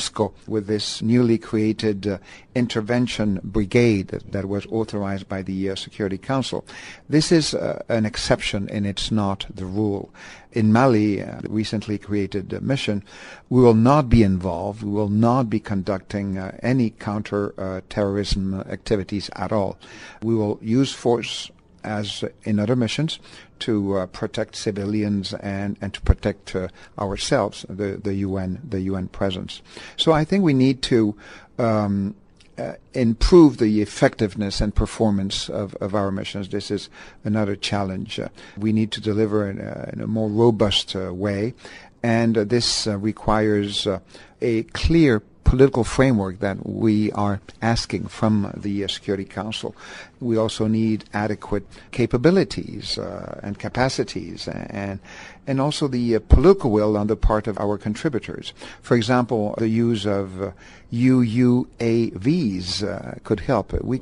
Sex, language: male, English